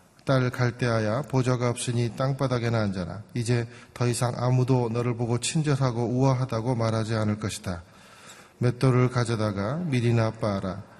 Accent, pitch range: native, 110-130 Hz